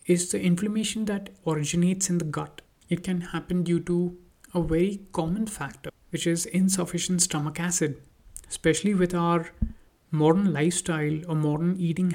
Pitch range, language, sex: 155-180 Hz, English, male